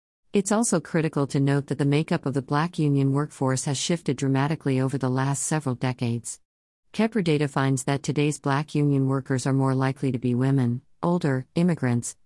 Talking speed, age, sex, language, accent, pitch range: 180 wpm, 50-69, female, English, American, 130-150 Hz